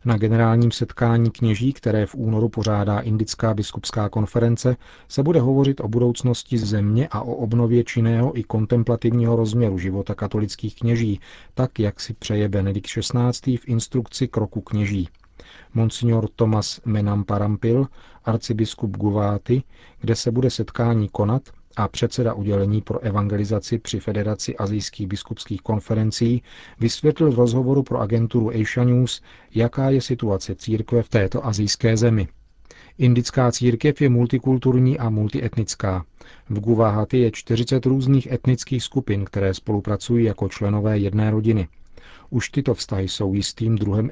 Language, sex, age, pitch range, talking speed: Czech, male, 40-59, 105-120 Hz, 130 wpm